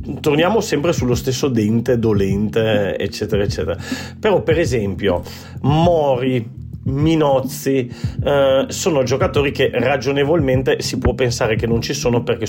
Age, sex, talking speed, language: 40-59, male, 125 wpm, Italian